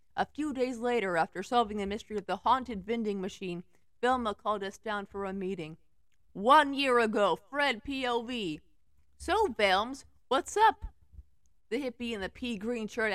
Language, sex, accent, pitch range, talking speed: English, female, American, 195-260 Hz, 165 wpm